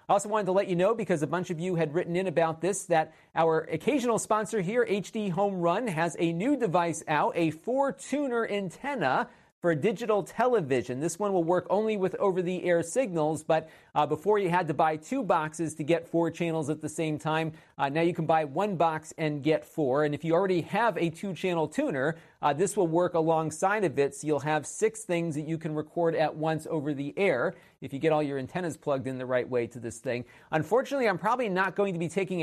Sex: male